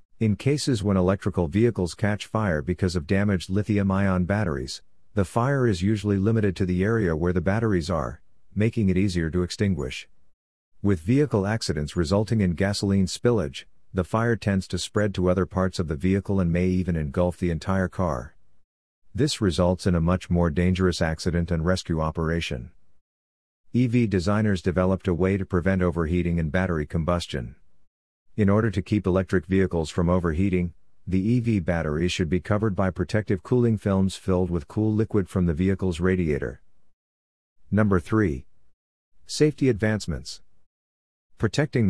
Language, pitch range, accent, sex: English, 85-100 Hz, American, male